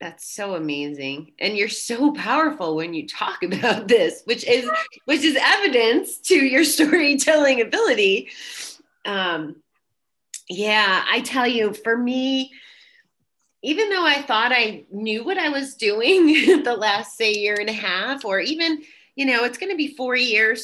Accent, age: American, 30-49